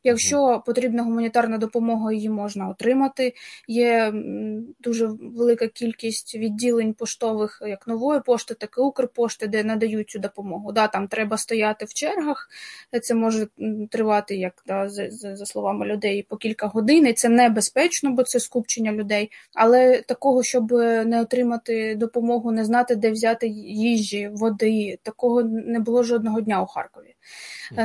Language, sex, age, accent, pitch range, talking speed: Ukrainian, female, 20-39, native, 220-245 Hz, 145 wpm